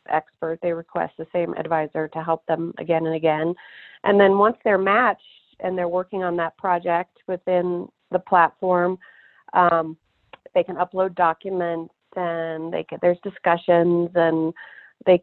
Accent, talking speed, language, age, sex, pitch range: American, 150 wpm, English, 30-49, female, 160-180 Hz